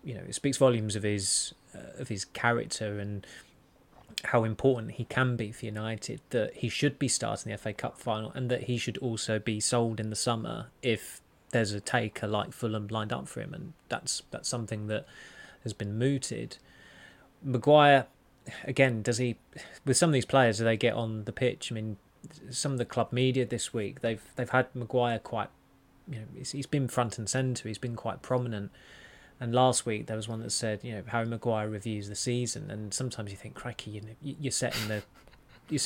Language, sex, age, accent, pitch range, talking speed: English, male, 20-39, British, 110-130 Hz, 205 wpm